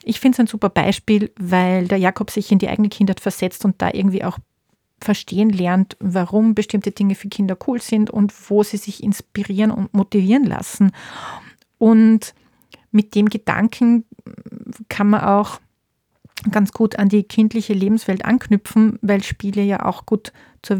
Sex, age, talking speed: female, 40-59, 160 wpm